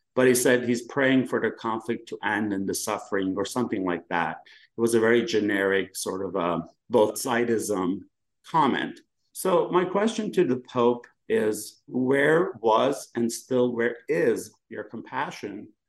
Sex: male